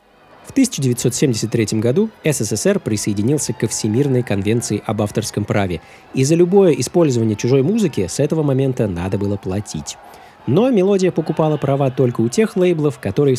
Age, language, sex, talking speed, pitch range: 20-39, Russian, male, 145 wpm, 110-160 Hz